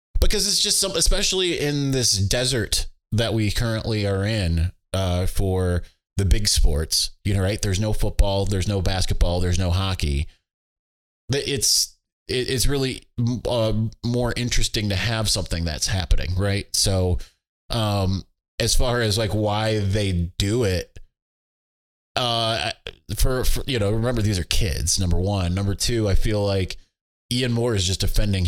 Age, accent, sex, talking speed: 20-39, American, male, 155 wpm